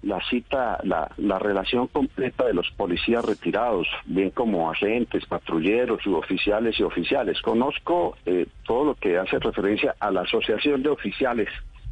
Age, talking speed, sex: 50-69, 145 wpm, male